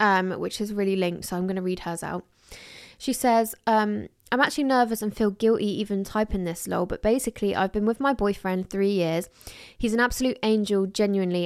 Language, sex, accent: English, female, British